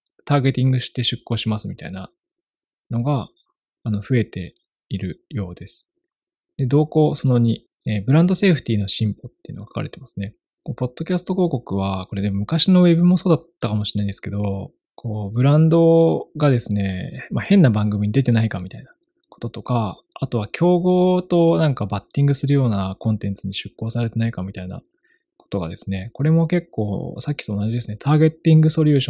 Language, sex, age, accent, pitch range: Japanese, male, 20-39, native, 105-160 Hz